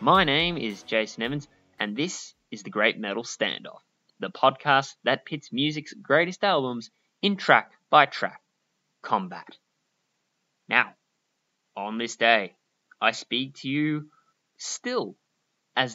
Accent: Australian